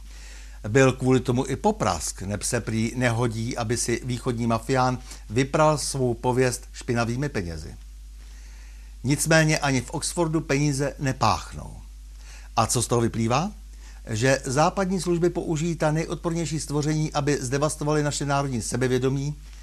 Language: Czech